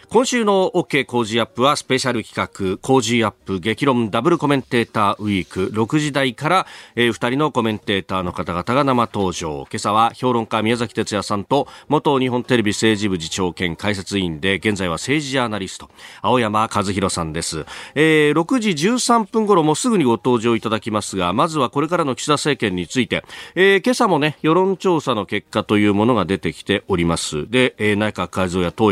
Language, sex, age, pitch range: Japanese, male, 40-59, 100-150 Hz